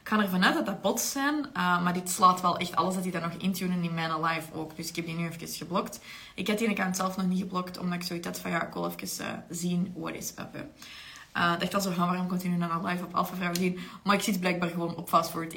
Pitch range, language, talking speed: 180-215 Hz, Dutch, 295 wpm